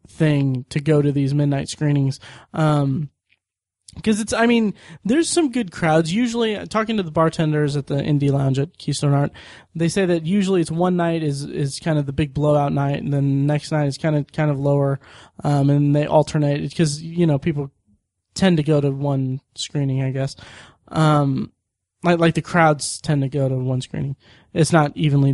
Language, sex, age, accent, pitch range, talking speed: English, male, 20-39, American, 135-165 Hz, 200 wpm